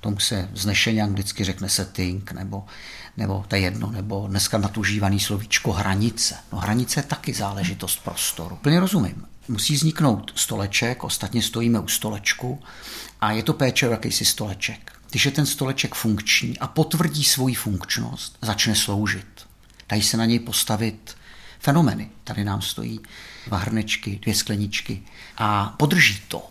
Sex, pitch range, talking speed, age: male, 105-150 Hz, 145 wpm, 50-69